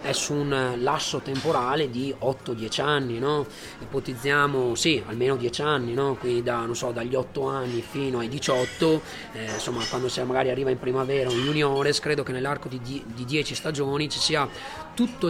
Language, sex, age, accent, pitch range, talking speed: Italian, male, 30-49, native, 130-165 Hz, 175 wpm